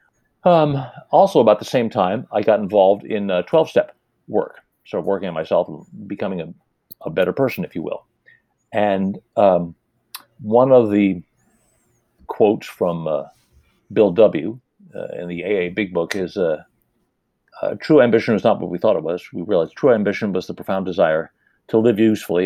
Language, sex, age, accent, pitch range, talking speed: English, male, 50-69, American, 95-120 Hz, 175 wpm